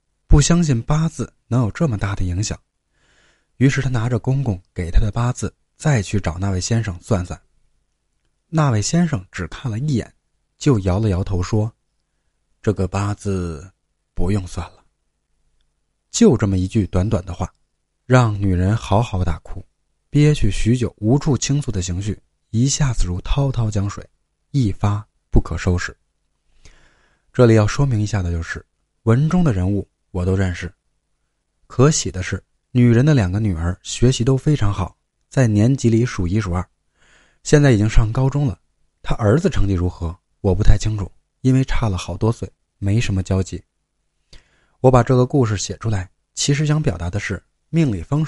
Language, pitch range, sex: Chinese, 90-125 Hz, male